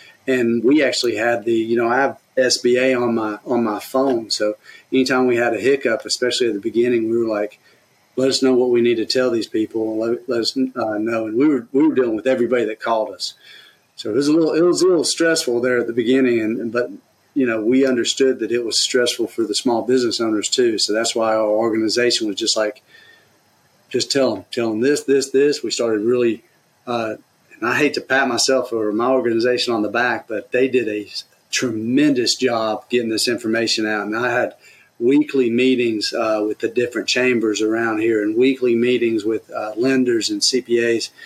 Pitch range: 115-130 Hz